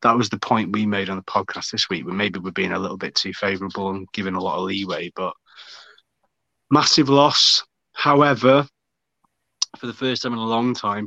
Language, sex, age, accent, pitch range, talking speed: English, male, 30-49, British, 100-115 Hz, 205 wpm